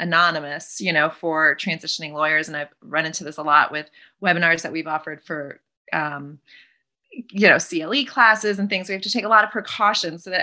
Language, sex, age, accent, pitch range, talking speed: English, female, 30-49, American, 165-205 Hz, 205 wpm